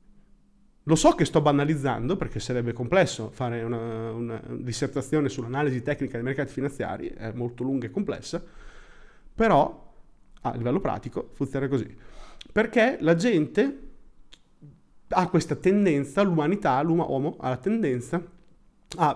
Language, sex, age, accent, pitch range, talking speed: Italian, male, 30-49, native, 120-165 Hz, 130 wpm